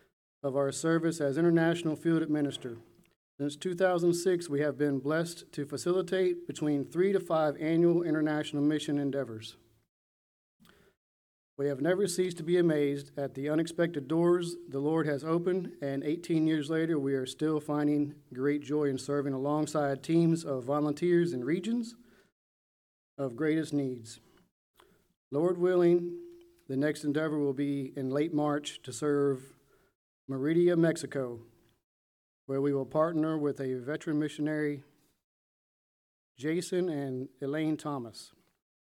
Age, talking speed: 40-59, 130 wpm